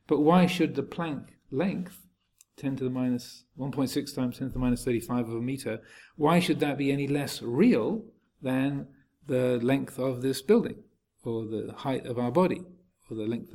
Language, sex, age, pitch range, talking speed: English, male, 50-69, 120-145 Hz, 185 wpm